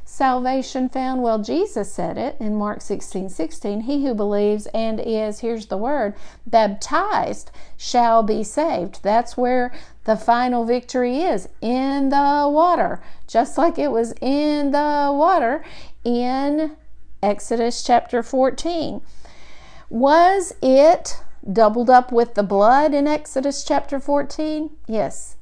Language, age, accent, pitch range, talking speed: English, 50-69, American, 220-270 Hz, 125 wpm